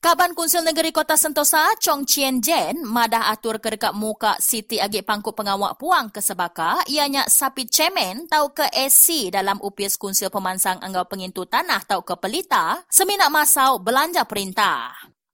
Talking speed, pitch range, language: 155 wpm, 205-305 Hz, English